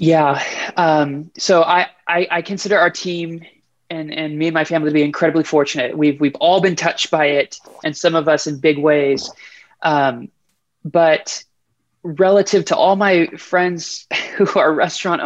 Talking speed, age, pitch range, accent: 170 wpm, 20-39, 155-185 Hz, American